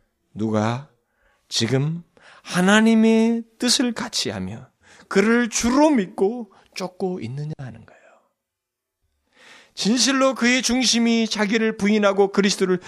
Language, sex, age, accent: Korean, male, 40-59, native